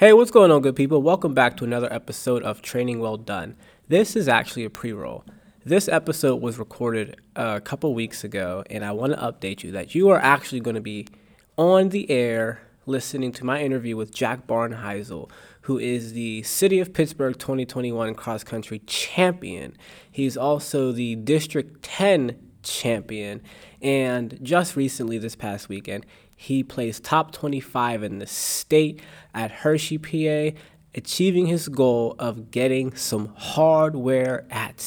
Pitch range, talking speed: 115-150 Hz, 155 wpm